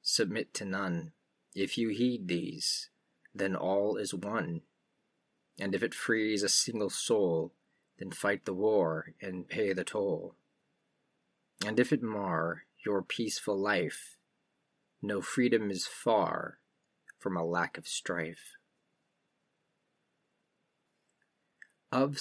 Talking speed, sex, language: 115 wpm, male, English